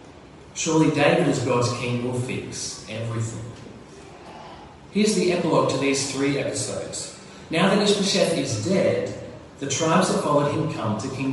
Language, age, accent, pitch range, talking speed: English, 30-49, Australian, 130-170 Hz, 150 wpm